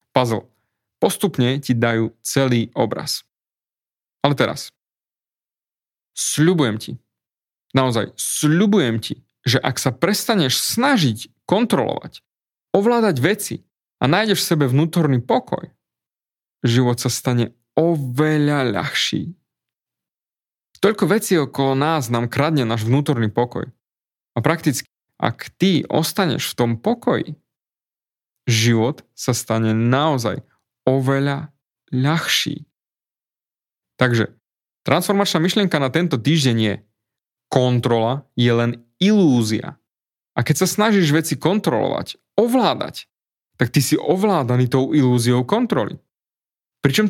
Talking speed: 105 wpm